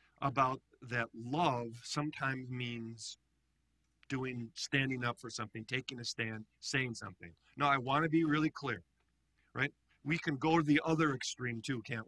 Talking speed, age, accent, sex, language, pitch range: 160 wpm, 50-69, American, male, English, 120-155 Hz